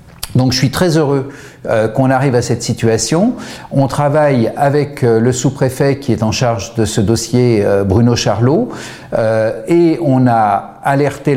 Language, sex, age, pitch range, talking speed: French, male, 50-69, 115-150 Hz, 170 wpm